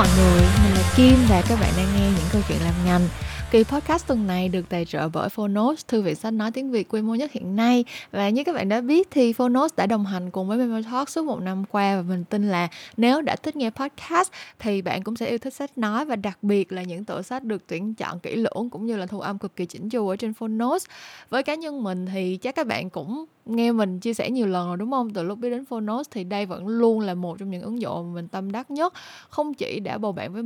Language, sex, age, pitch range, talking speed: Vietnamese, female, 10-29, 185-245 Hz, 270 wpm